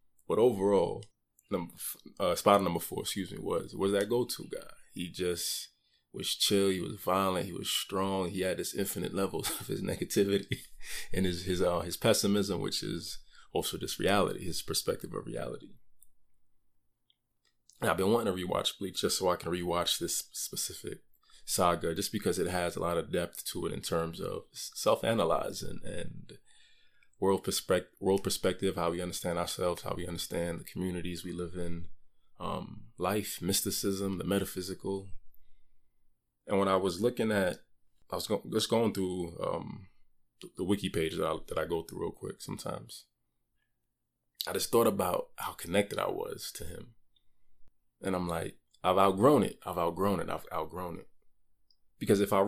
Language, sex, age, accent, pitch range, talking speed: English, male, 20-39, American, 80-95 Hz, 170 wpm